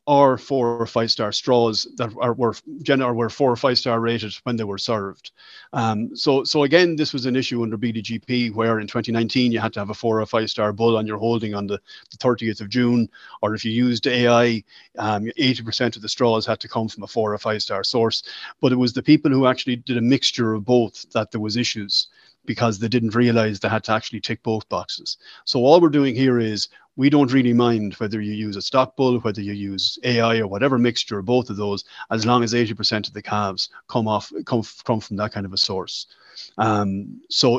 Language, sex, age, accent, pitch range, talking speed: English, male, 30-49, Irish, 110-130 Hz, 230 wpm